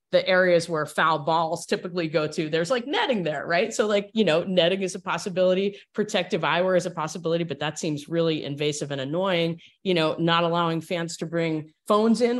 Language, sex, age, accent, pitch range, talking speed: English, female, 30-49, American, 150-190 Hz, 205 wpm